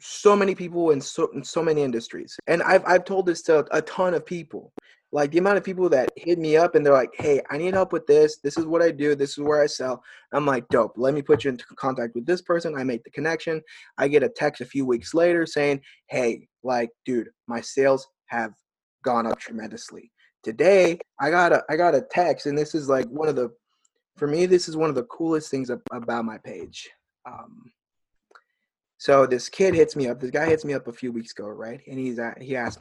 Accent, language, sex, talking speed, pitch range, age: American, English, male, 235 wpm, 125-165 Hz, 20-39